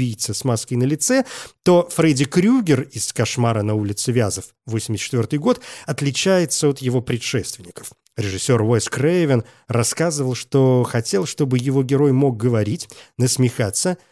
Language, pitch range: Russian, 115-155 Hz